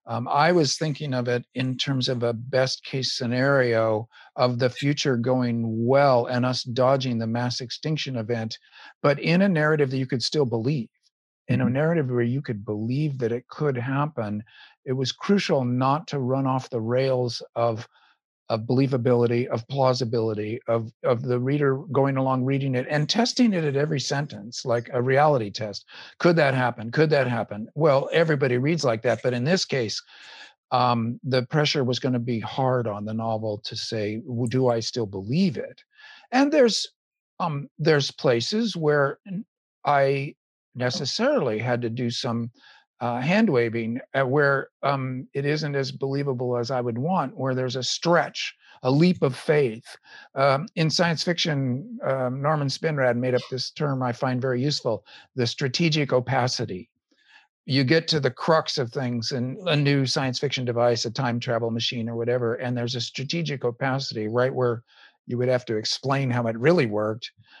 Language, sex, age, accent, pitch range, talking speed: English, male, 50-69, American, 120-145 Hz, 175 wpm